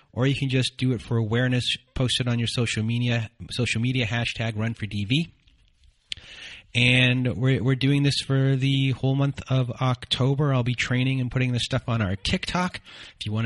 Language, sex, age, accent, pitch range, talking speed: English, male, 30-49, American, 105-135 Hz, 195 wpm